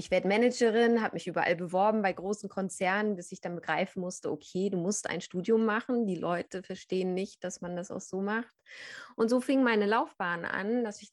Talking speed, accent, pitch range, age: 210 wpm, German, 180-220 Hz, 20-39